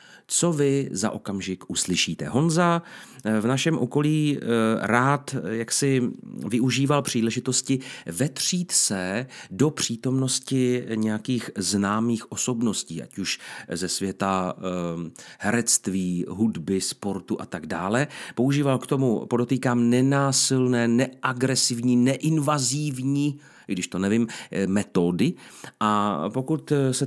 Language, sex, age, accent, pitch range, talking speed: Czech, male, 40-59, native, 105-135 Hz, 100 wpm